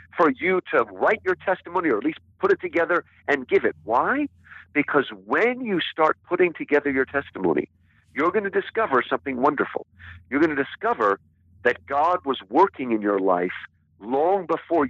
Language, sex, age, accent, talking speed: English, male, 50-69, American, 165 wpm